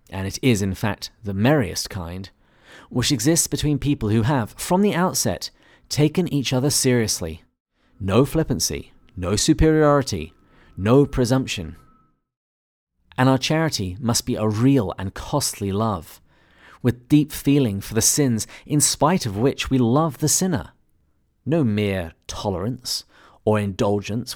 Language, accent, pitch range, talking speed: English, British, 95-140 Hz, 140 wpm